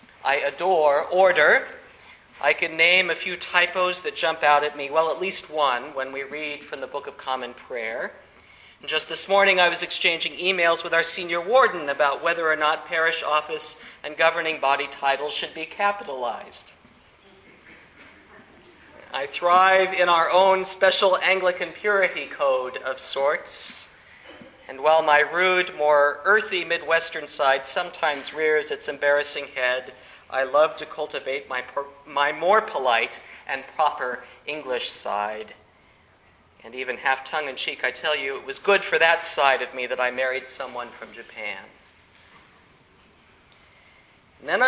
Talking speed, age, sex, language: 150 wpm, 40-59, male, English